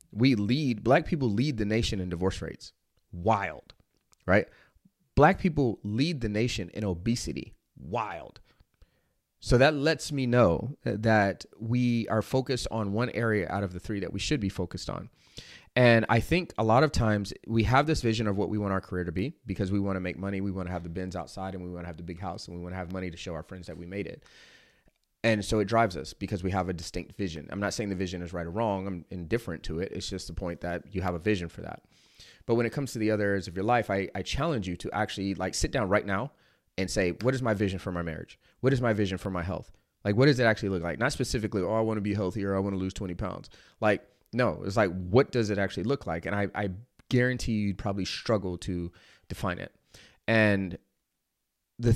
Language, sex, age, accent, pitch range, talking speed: English, male, 30-49, American, 90-115 Hz, 245 wpm